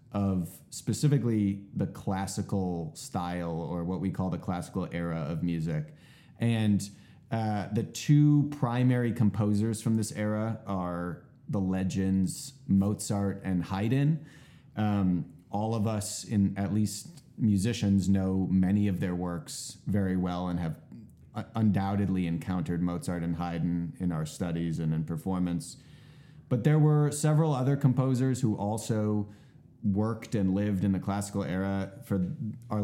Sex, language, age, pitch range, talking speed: male, English, 30-49, 95-120 Hz, 135 wpm